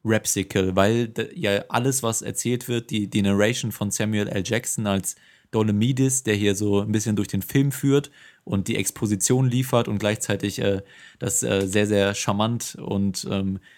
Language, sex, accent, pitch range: German, male, German, 100-115 Hz